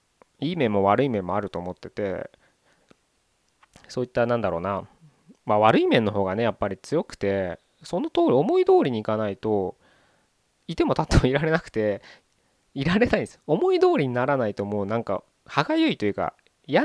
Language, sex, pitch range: Japanese, male, 105-165 Hz